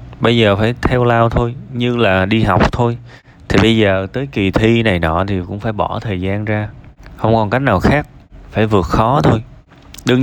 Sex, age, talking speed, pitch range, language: male, 20-39, 210 wpm, 95-120 Hz, Vietnamese